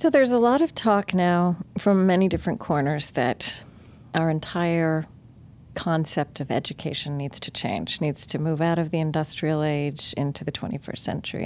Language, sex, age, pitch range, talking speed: English, female, 40-59, 150-195 Hz, 170 wpm